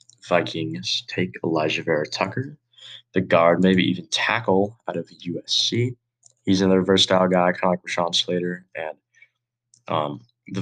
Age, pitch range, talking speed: 20-39, 90-120 Hz, 140 wpm